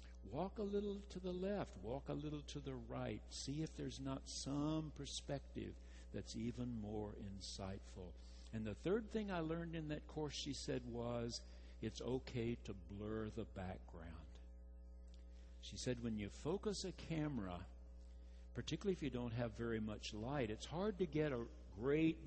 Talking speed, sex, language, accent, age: 165 wpm, male, English, American, 60-79